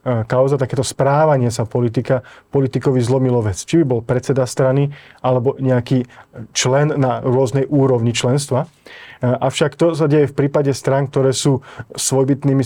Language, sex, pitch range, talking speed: Slovak, male, 125-145 Hz, 140 wpm